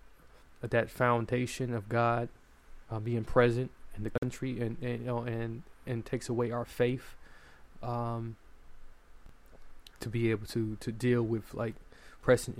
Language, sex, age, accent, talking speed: English, male, 20-39, American, 145 wpm